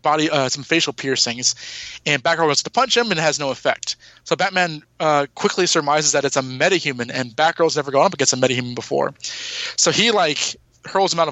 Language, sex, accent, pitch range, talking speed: English, male, American, 135-160 Hz, 210 wpm